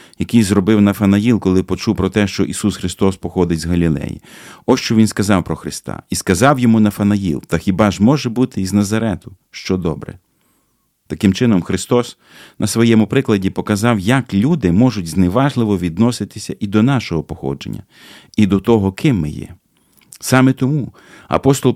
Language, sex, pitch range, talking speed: Ukrainian, male, 95-125 Hz, 155 wpm